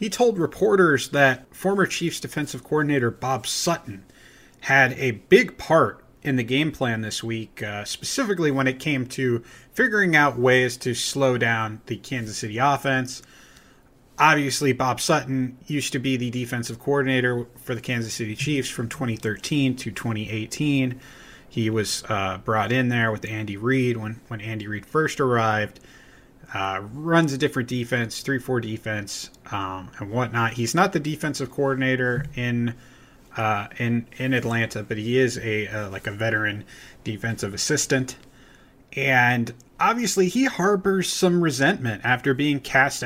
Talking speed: 150 wpm